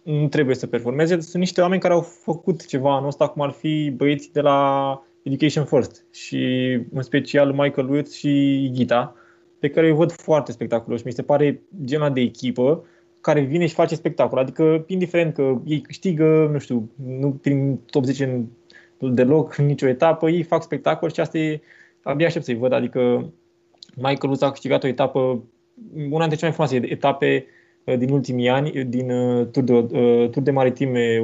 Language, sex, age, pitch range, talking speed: Romanian, male, 20-39, 125-165 Hz, 175 wpm